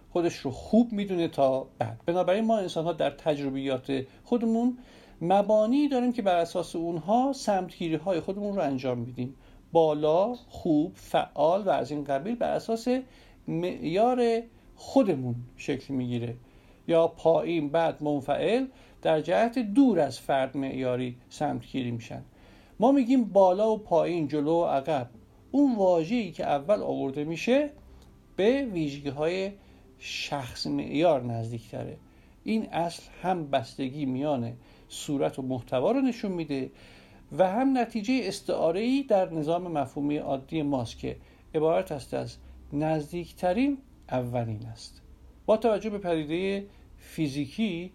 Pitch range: 135-215 Hz